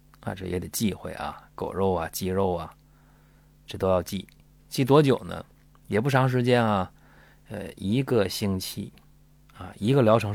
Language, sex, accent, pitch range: Chinese, male, native, 95-145 Hz